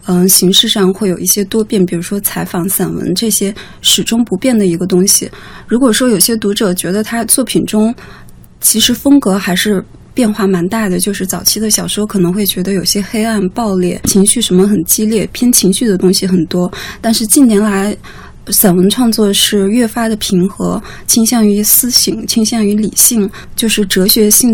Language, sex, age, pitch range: Chinese, female, 20-39, 190-230 Hz